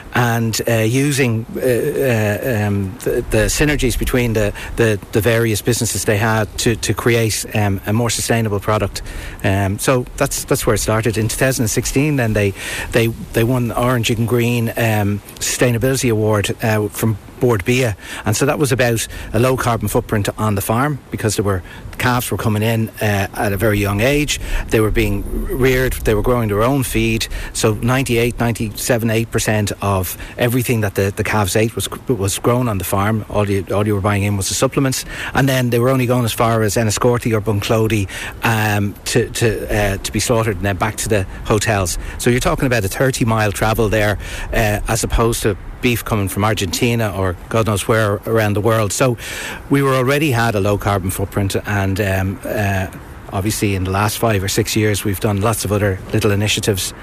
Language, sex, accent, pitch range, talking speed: English, male, Irish, 105-120 Hz, 195 wpm